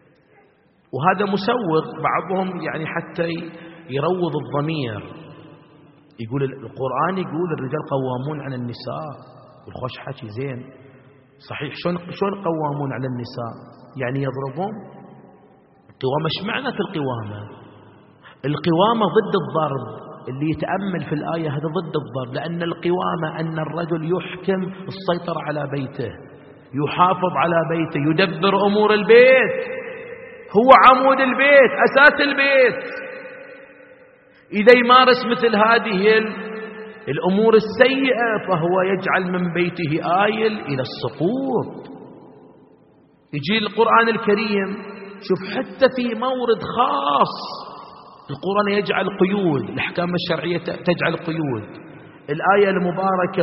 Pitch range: 150-210 Hz